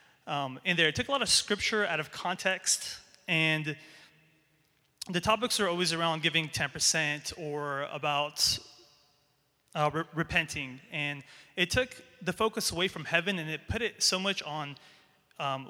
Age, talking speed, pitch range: 30-49, 155 wpm, 150-190 Hz